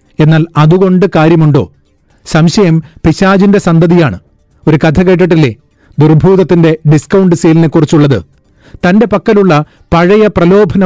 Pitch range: 150-180 Hz